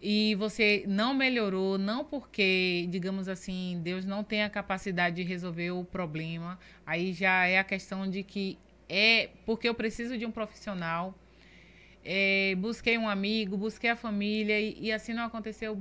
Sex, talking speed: female, 160 wpm